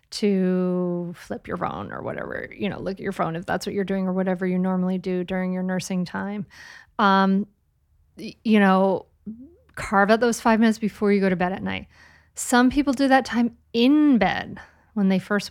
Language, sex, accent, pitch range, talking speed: English, female, American, 185-225 Hz, 195 wpm